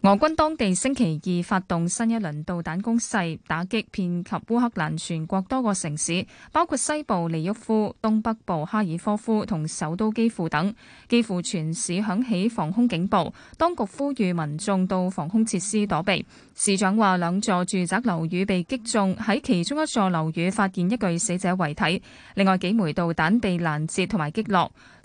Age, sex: 20-39, female